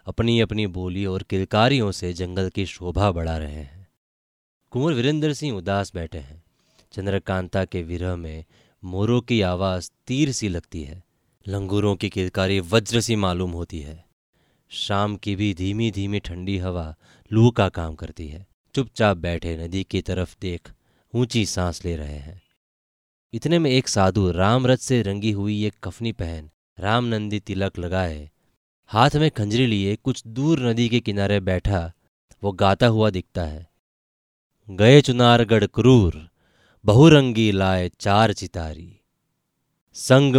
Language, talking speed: Hindi, 145 wpm